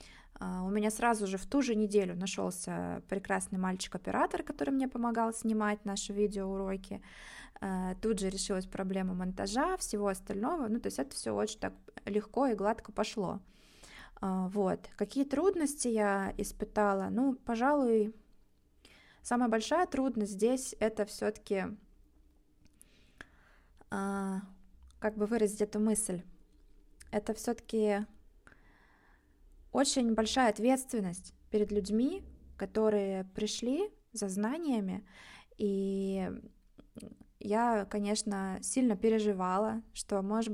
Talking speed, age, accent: 110 wpm, 20-39, native